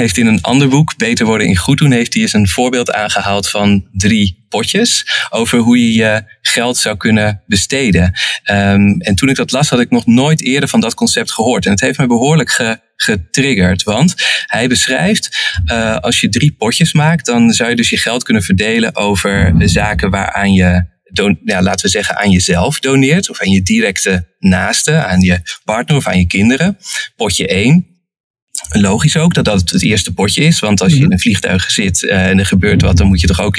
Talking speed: 205 wpm